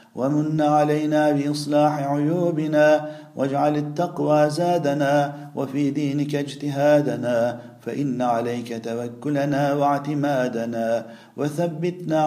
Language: Turkish